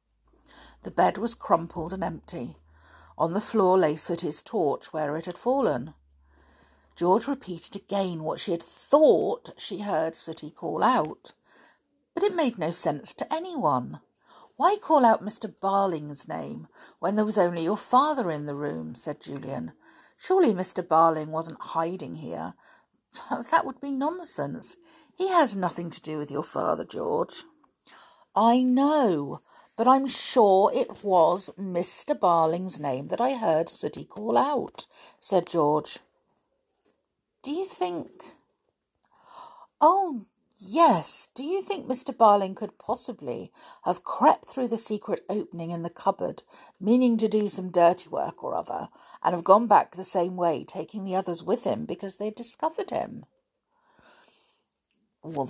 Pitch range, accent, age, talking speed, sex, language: 170-280 Hz, British, 50-69, 150 wpm, female, English